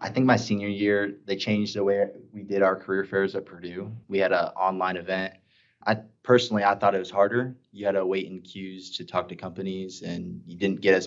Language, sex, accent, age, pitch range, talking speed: English, male, American, 20-39, 90-105 Hz, 235 wpm